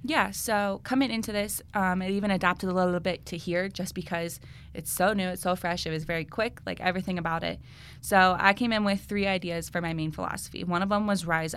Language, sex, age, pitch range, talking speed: English, female, 20-39, 160-180 Hz, 240 wpm